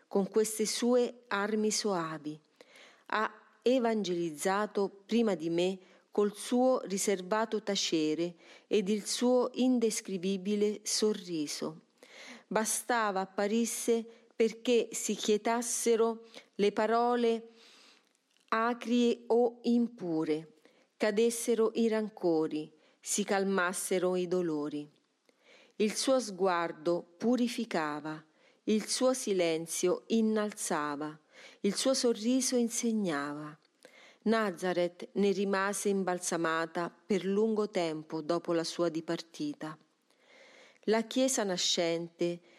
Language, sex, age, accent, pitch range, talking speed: Italian, female, 40-59, native, 175-230 Hz, 85 wpm